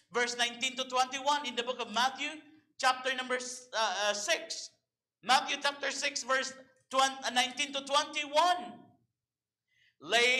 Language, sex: English, male